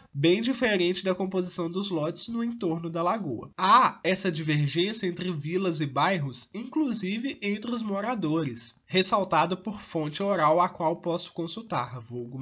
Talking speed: 145 wpm